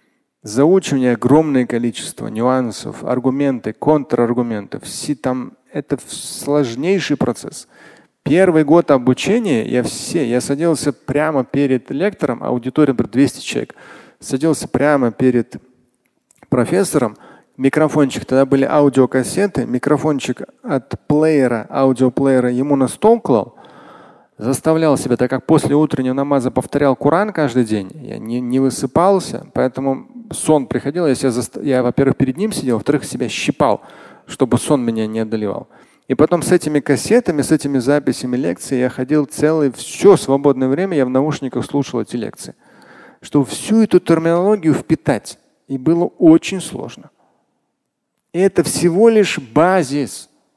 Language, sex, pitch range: Russian, male, 130-160 Hz